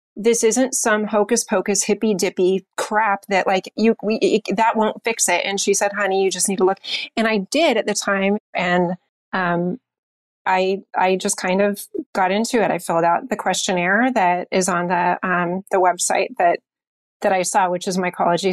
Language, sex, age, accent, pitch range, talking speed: English, female, 30-49, American, 180-205 Hz, 190 wpm